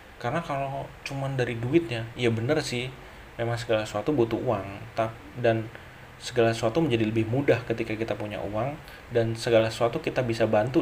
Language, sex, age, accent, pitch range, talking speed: Indonesian, male, 30-49, native, 115-130 Hz, 160 wpm